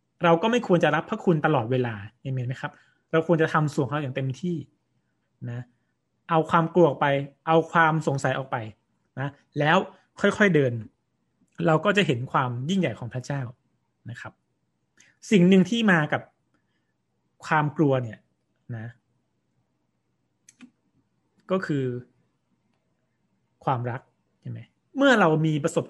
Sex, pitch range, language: male, 125-170 Hz, Thai